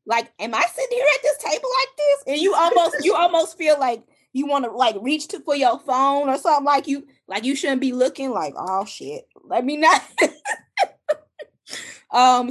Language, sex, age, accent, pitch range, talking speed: English, female, 20-39, American, 200-280 Hz, 200 wpm